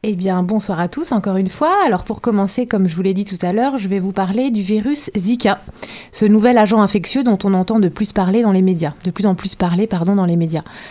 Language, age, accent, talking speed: French, 30-49, French, 265 wpm